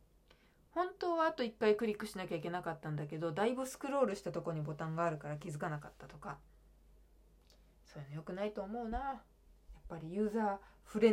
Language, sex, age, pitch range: Japanese, female, 20-39, 150-200 Hz